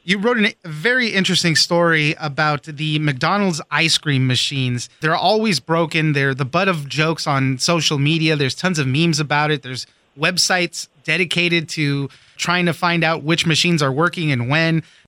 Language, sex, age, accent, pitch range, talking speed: English, male, 30-49, American, 150-180 Hz, 170 wpm